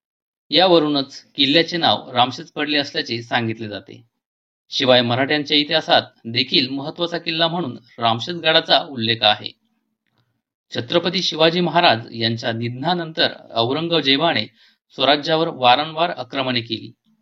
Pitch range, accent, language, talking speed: 120-160 Hz, native, Marathi, 100 wpm